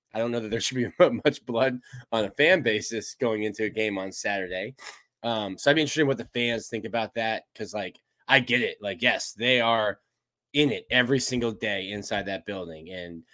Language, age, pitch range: English, 20-39, 105-125 Hz